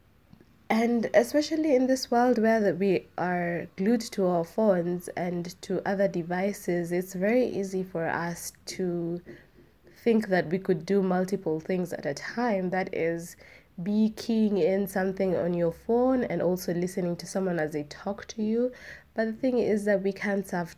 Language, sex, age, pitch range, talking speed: English, female, 20-39, 170-200 Hz, 170 wpm